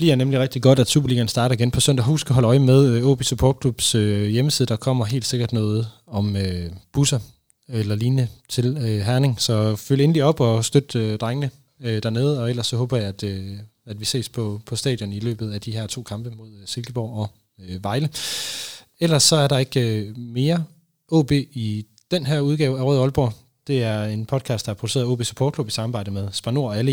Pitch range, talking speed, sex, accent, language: 105-130 Hz, 200 wpm, male, native, Danish